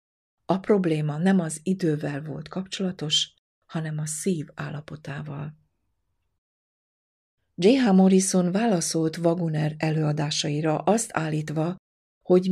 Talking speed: 90 wpm